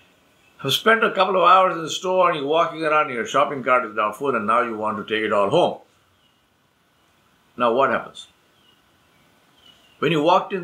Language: English